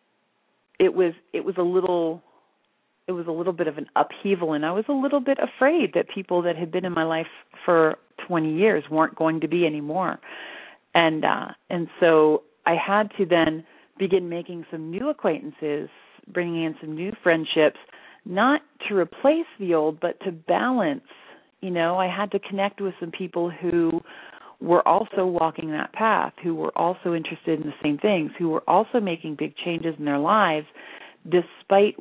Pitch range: 155-195 Hz